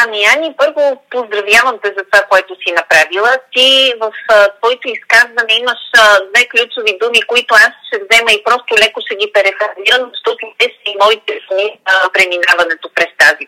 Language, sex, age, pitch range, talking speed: Bulgarian, female, 30-49, 185-235 Hz, 165 wpm